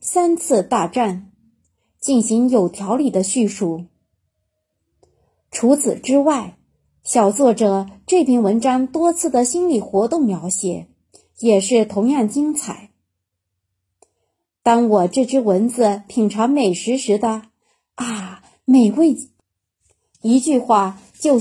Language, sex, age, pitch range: Chinese, female, 30-49, 195-275 Hz